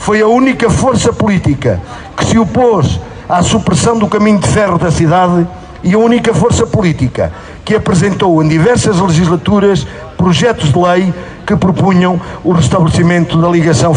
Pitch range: 150-205 Hz